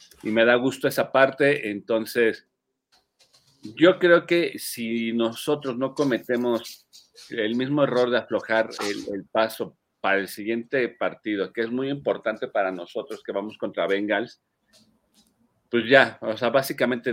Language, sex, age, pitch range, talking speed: Spanish, male, 50-69, 100-135 Hz, 145 wpm